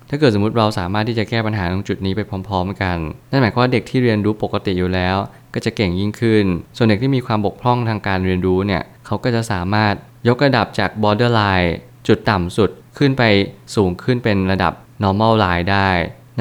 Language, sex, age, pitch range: Thai, male, 20-39, 95-115 Hz